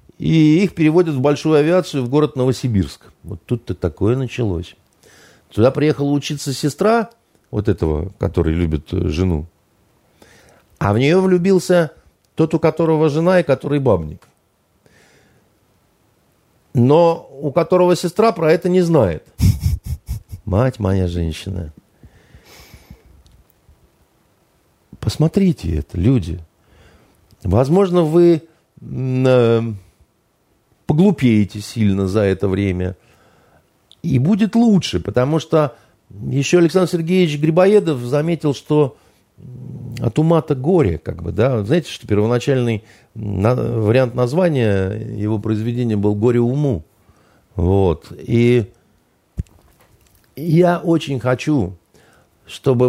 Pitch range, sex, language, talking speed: 95-155 Hz, male, Russian, 100 wpm